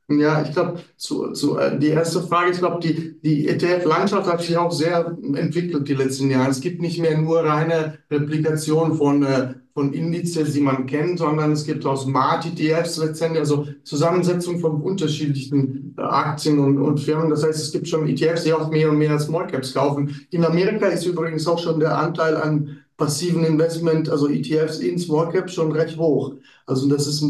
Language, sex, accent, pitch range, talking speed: German, male, German, 145-165 Hz, 190 wpm